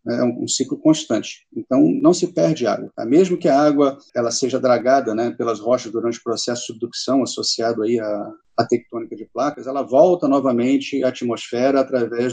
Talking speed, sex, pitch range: 185 wpm, male, 120-150 Hz